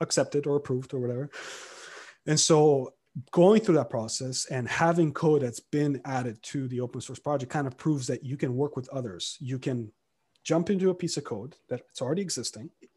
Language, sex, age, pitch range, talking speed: English, male, 30-49, 135-175 Hz, 195 wpm